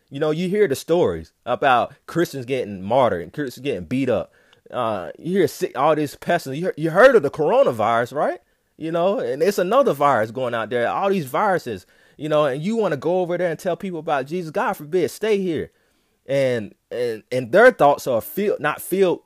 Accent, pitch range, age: American, 115-170 Hz, 30-49